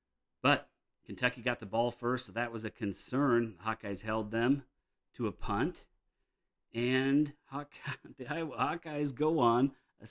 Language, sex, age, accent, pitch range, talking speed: English, male, 40-59, American, 95-120 Hz, 155 wpm